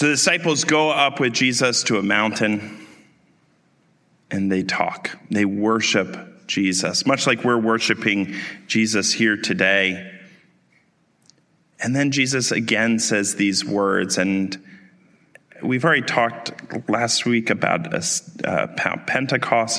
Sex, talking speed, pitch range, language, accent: male, 115 wpm, 100-125 Hz, English, American